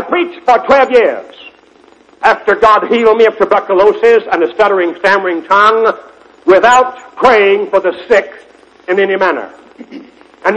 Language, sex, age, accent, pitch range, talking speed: English, male, 60-79, American, 230-385 Hz, 140 wpm